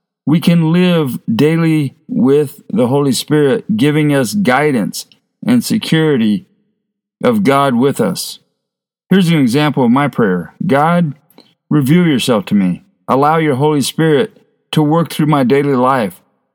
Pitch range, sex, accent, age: 140-215 Hz, male, American, 50-69